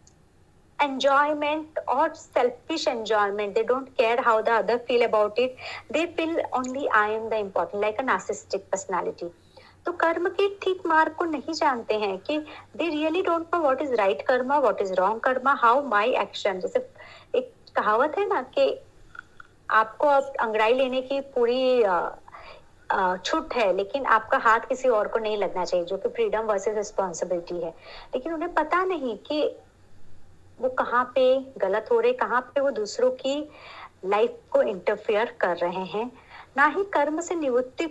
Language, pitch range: Hindi, 220-320 Hz